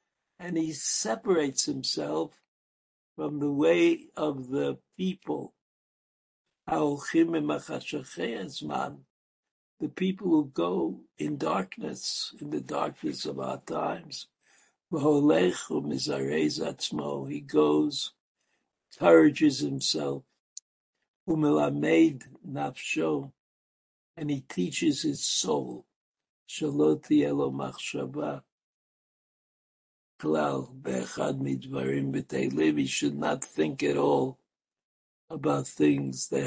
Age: 60-79